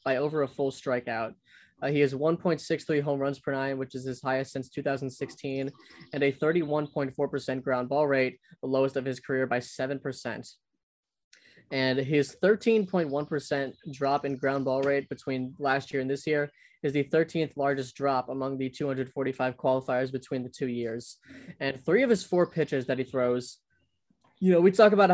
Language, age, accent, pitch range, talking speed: English, 20-39, American, 130-150 Hz, 170 wpm